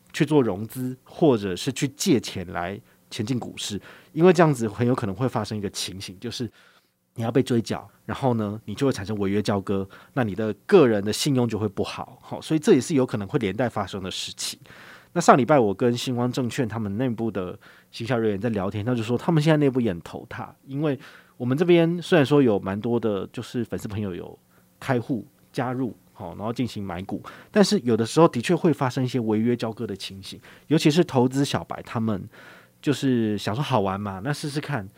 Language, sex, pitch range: Chinese, male, 105-140 Hz